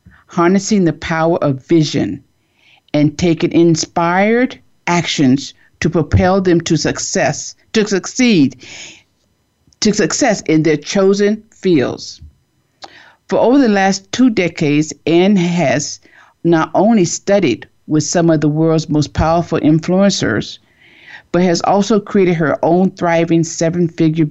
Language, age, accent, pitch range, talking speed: English, 50-69, American, 155-195 Hz, 120 wpm